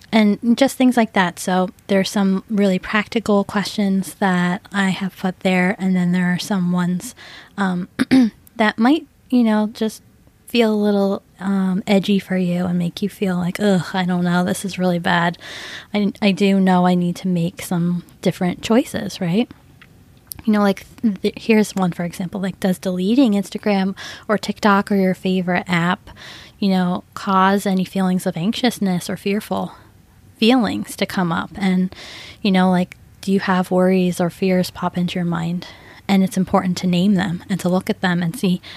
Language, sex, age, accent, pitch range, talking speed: English, female, 20-39, American, 180-205 Hz, 185 wpm